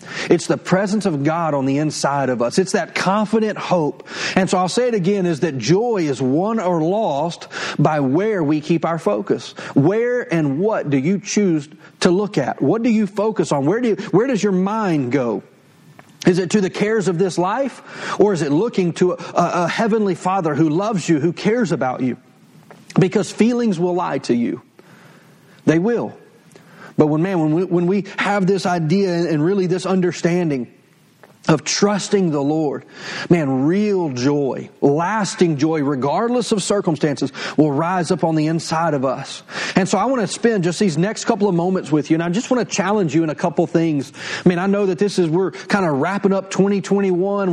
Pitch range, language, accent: 160-200 Hz, English, American